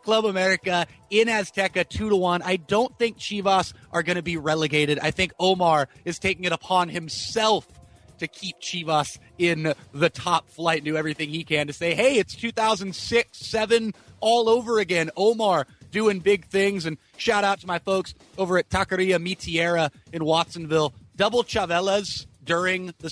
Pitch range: 170-225 Hz